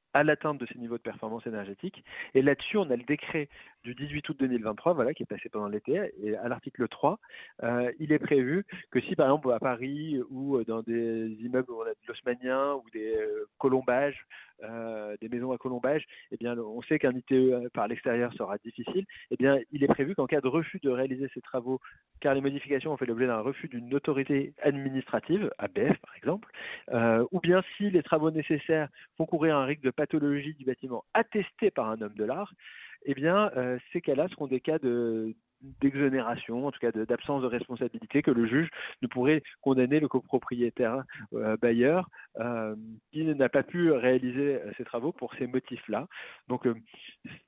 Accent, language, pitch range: French, French, 120-145 Hz